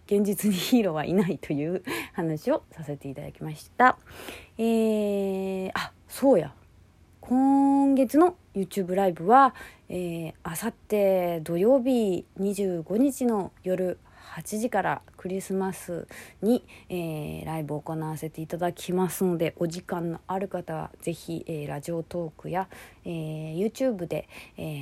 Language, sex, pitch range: Japanese, female, 160-205 Hz